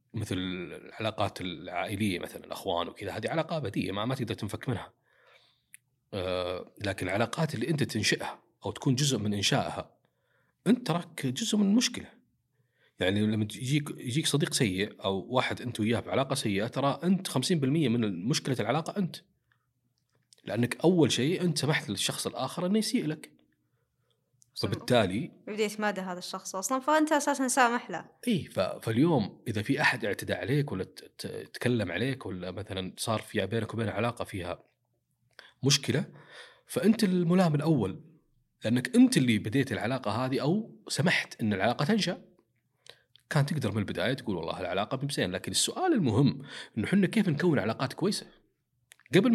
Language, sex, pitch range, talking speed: English, male, 110-170 Hz, 145 wpm